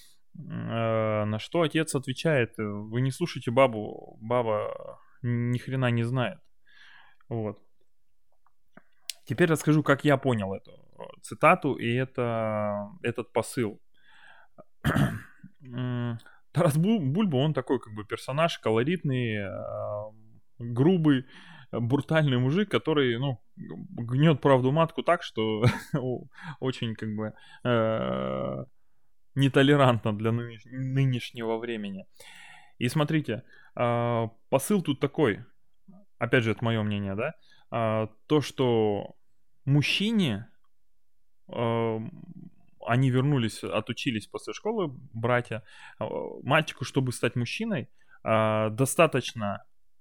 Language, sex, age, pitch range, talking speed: Russian, male, 20-39, 115-150 Hz, 90 wpm